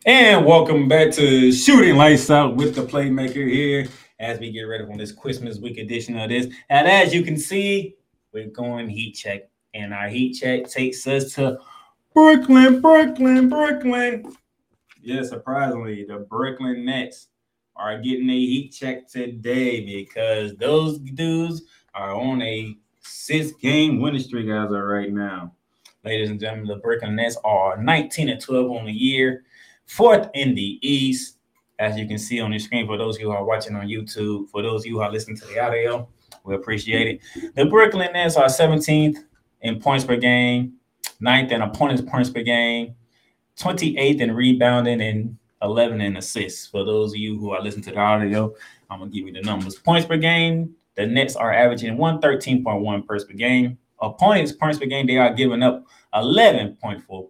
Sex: male